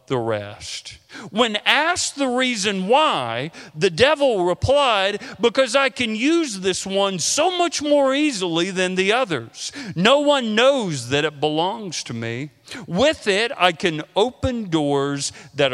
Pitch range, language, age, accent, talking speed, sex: 115-175 Hz, English, 40-59, American, 145 wpm, male